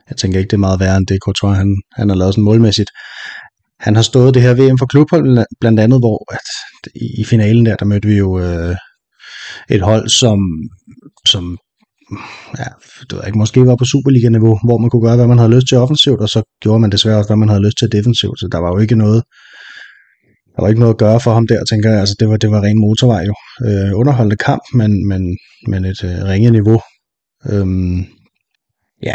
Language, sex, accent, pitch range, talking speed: Danish, male, native, 100-115 Hz, 215 wpm